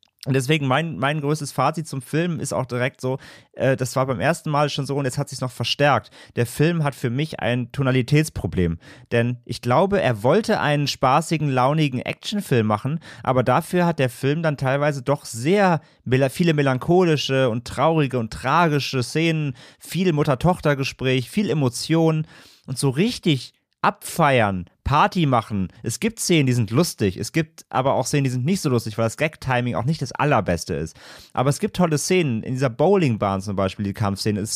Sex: male